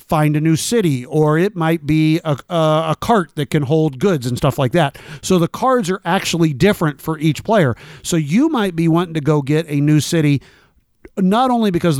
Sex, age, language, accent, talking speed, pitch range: male, 50-69, English, American, 220 wpm, 150-190 Hz